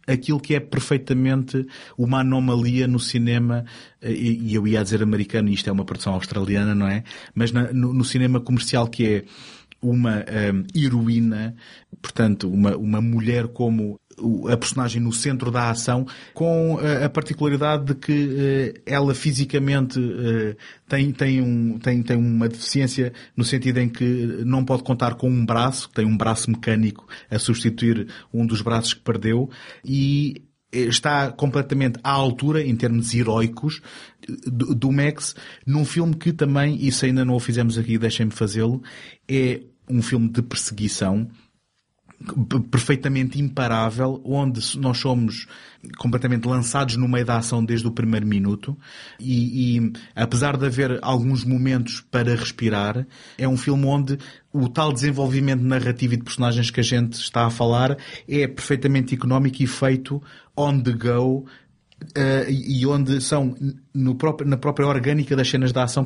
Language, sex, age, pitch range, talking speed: Portuguese, male, 30-49, 115-135 Hz, 155 wpm